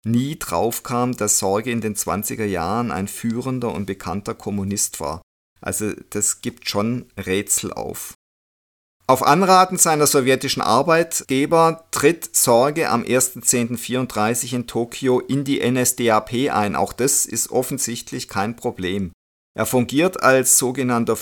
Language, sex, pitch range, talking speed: German, male, 100-135 Hz, 130 wpm